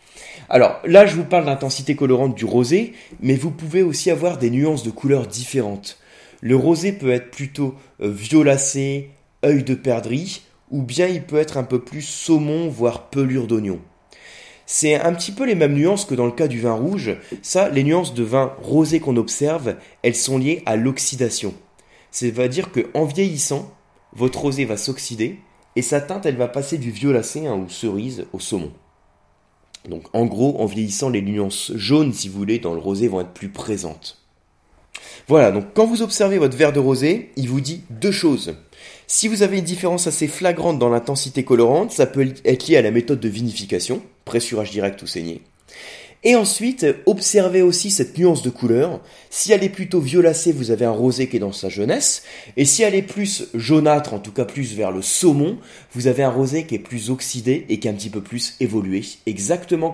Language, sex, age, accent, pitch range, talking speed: French, male, 20-39, French, 115-165 Hz, 195 wpm